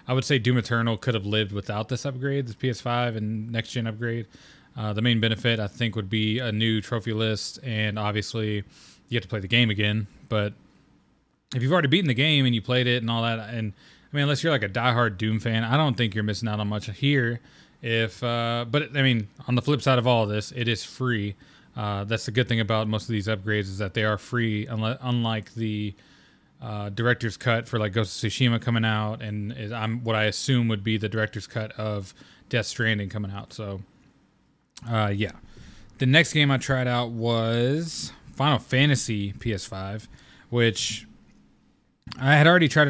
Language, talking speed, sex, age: English, 205 wpm, male, 20-39